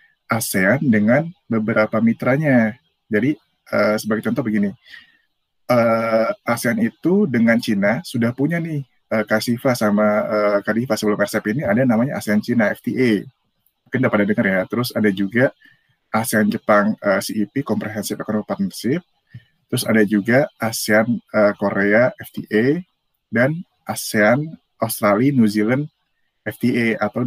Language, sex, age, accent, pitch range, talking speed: Indonesian, male, 30-49, native, 105-130 Hz, 130 wpm